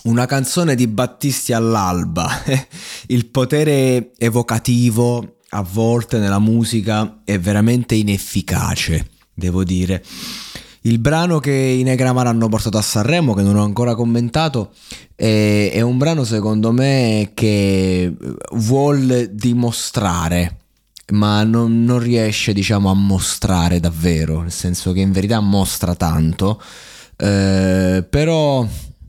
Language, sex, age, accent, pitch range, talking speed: Italian, male, 20-39, native, 95-120 Hz, 120 wpm